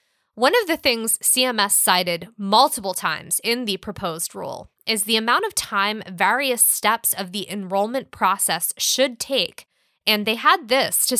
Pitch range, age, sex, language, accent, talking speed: 200-255 Hz, 20-39, female, English, American, 160 wpm